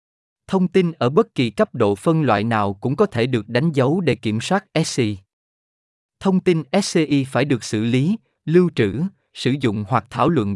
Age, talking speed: 20-39, 195 wpm